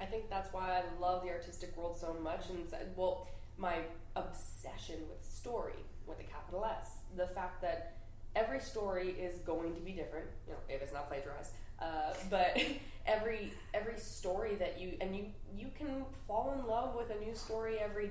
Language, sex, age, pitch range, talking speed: English, female, 20-39, 165-220 Hz, 195 wpm